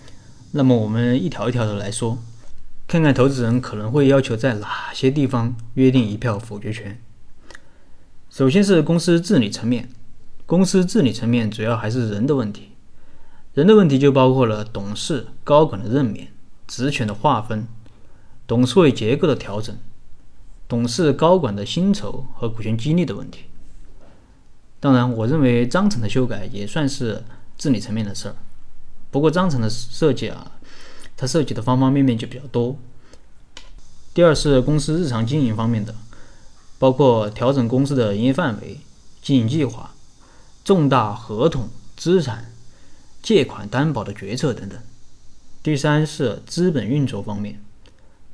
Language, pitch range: Chinese, 110-140 Hz